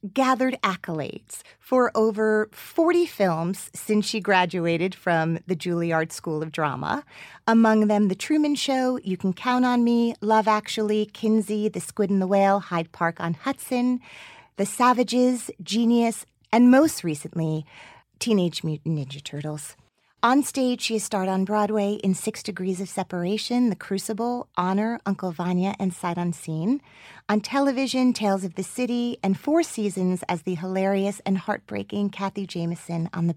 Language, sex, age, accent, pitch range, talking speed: English, female, 30-49, American, 175-225 Hz, 150 wpm